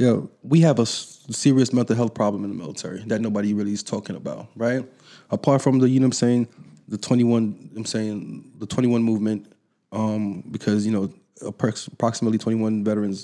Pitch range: 105-125 Hz